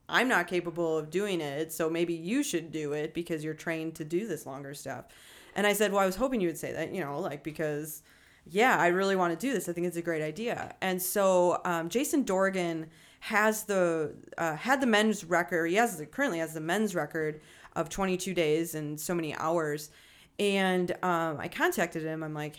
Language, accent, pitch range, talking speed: English, American, 160-205 Hz, 215 wpm